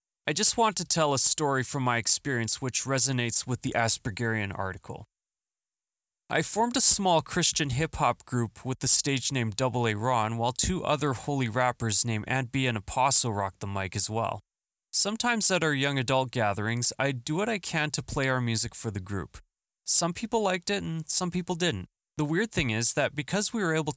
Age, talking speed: 20-39, 200 wpm